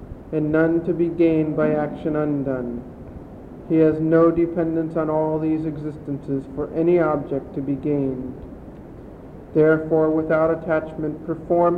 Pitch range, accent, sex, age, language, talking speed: 150-165 Hz, American, male, 50-69, English, 130 wpm